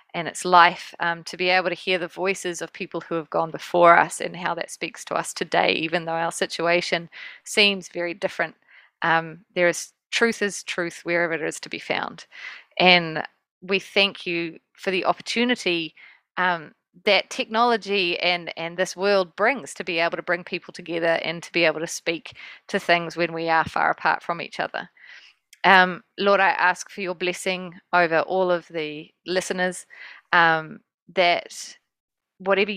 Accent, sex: Australian, female